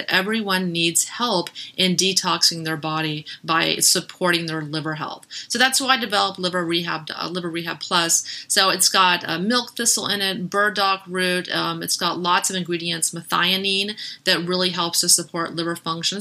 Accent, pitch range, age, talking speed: American, 170-210 Hz, 30-49, 175 wpm